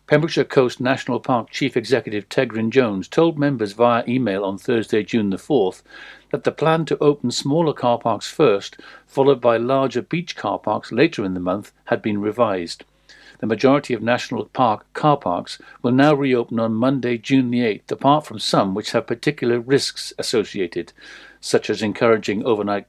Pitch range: 110-135 Hz